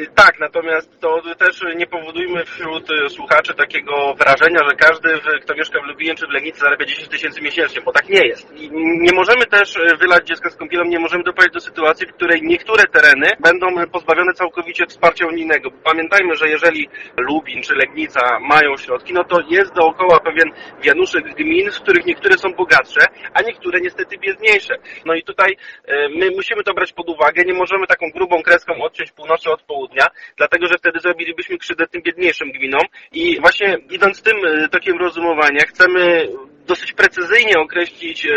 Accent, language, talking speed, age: native, Polish, 170 wpm, 30-49